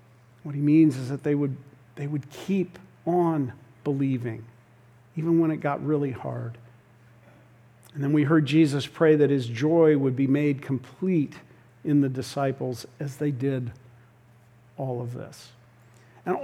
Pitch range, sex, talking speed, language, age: 125-165 Hz, male, 145 wpm, English, 50-69